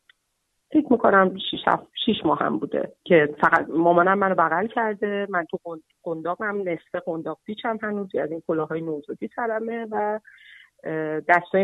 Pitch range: 160-205 Hz